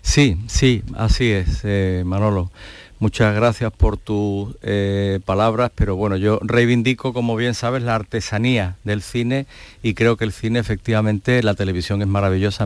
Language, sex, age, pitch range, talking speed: Spanish, male, 50-69, 100-120 Hz, 155 wpm